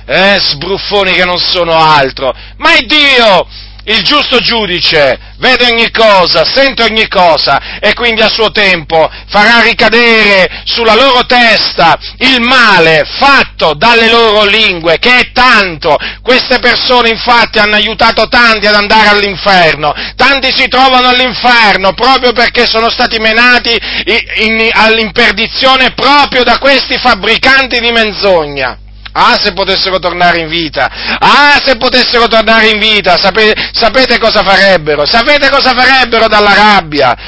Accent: native